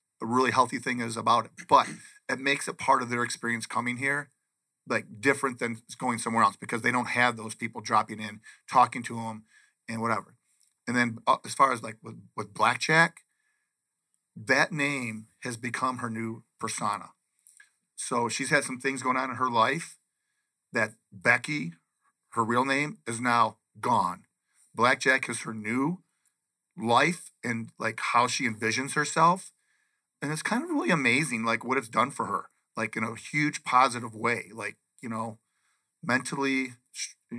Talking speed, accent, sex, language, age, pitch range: 165 wpm, American, male, English, 40-59, 120-145 Hz